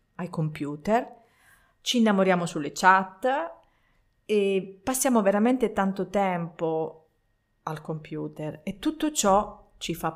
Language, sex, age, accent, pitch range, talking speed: Italian, female, 40-59, native, 160-210 Hz, 100 wpm